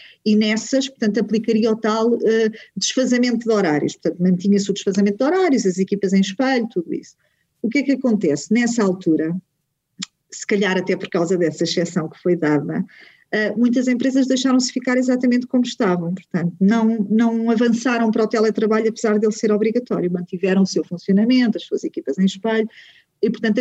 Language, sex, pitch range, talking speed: Portuguese, female, 195-235 Hz, 170 wpm